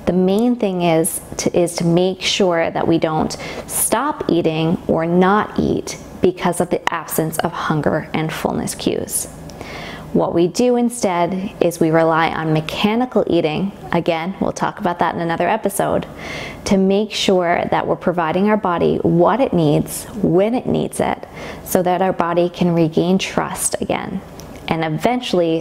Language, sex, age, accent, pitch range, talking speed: English, female, 20-39, American, 165-200 Hz, 160 wpm